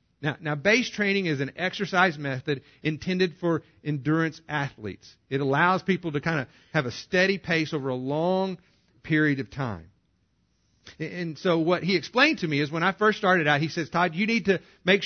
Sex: male